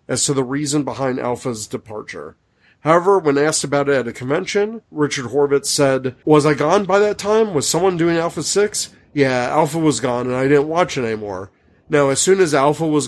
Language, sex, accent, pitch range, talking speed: English, male, American, 125-150 Hz, 205 wpm